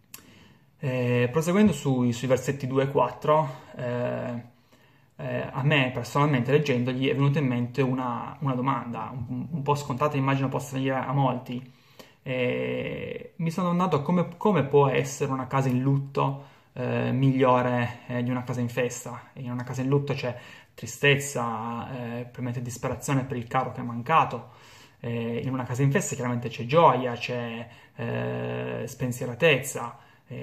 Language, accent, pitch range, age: Italian, native, 125-140 Hz, 20-39